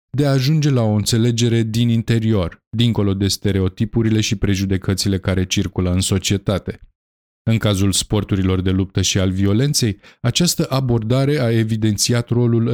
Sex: male